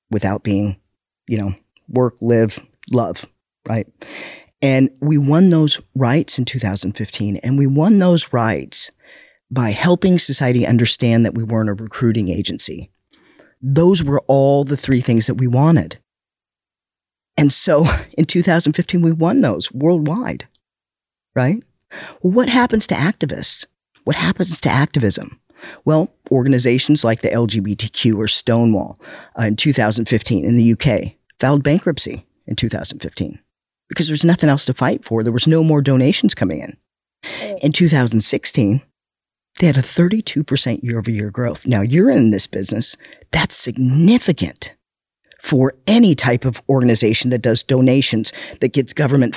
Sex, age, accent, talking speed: male, 40-59, American, 135 wpm